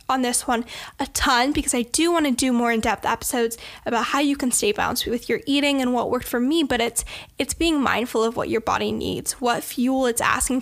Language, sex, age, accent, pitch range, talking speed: English, female, 10-29, American, 230-275 Hz, 235 wpm